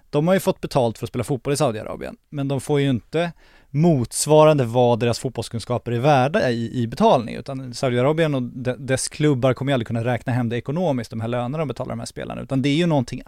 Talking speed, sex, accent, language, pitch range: 235 wpm, male, Swedish, English, 115-145 Hz